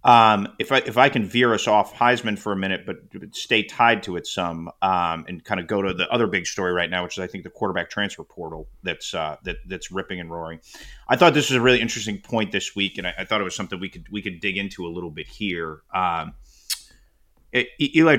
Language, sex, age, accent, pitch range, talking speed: English, male, 30-49, American, 95-120 Hz, 245 wpm